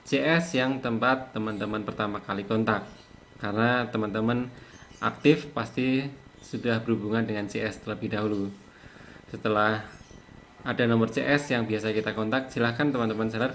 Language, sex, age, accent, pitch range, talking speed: Indonesian, male, 20-39, native, 110-130 Hz, 125 wpm